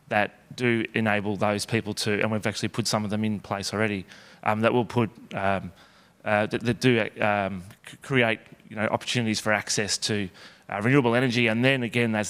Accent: Australian